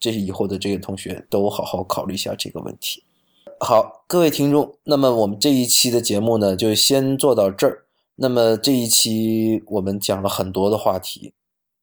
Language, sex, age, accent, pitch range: Chinese, male, 20-39, native, 95-115 Hz